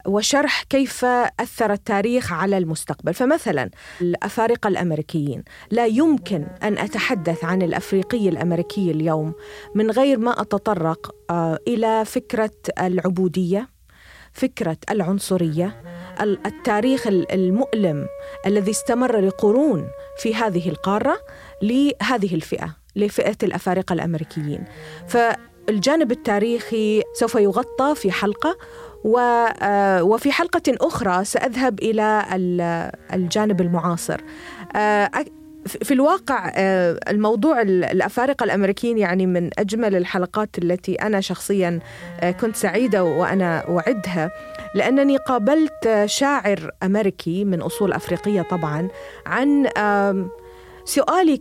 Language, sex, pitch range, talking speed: Arabic, female, 180-245 Hz, 90 wpm